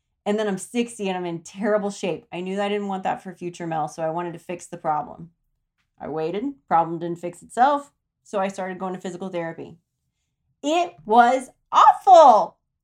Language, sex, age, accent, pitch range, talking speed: English, female, 30-49, American, 170-260 Hz, 190 wpm